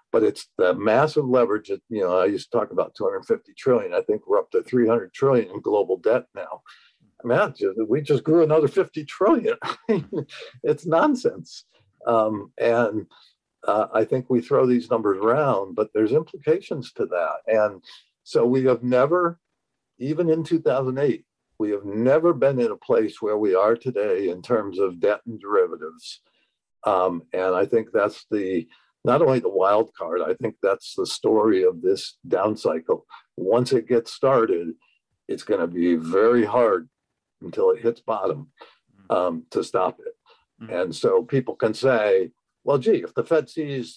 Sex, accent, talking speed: male, American, 170 wpm